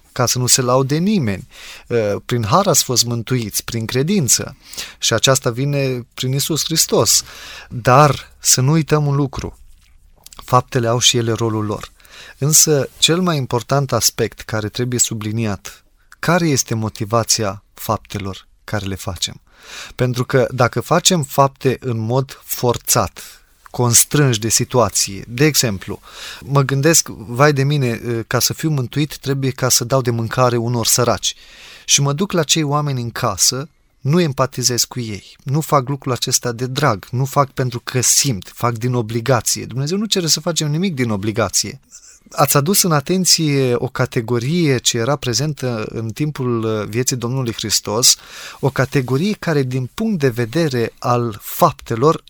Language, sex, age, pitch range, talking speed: Romanian, male, 20-39, 115-145 Hz, 155 wpm